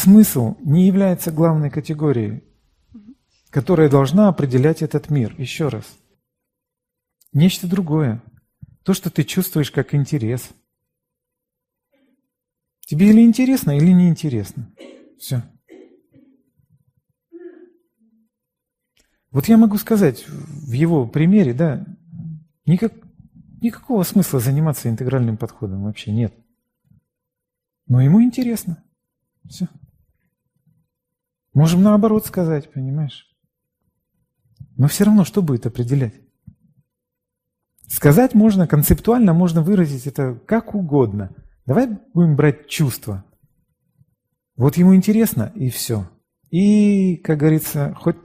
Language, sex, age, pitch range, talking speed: Russian, male, 40-59, 130-185 Hz, 95 wpm